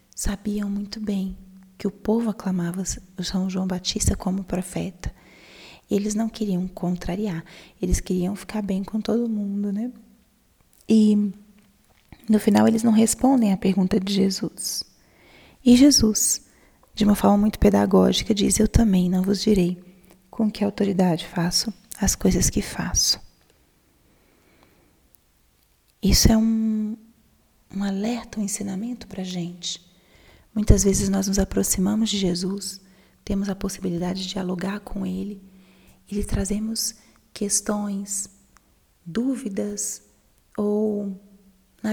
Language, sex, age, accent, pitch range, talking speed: Portuguese, female, 20-39, Brazilian, 185-215 Hz, 125 wpm